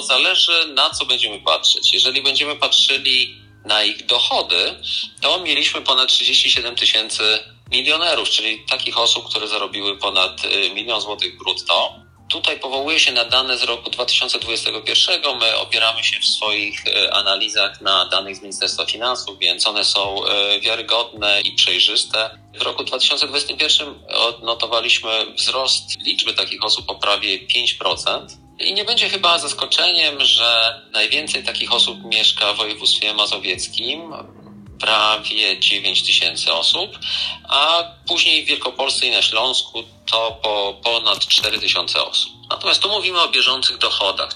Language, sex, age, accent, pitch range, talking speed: Polish, male, 40-59, native, 105-140 Hz, 130 wpm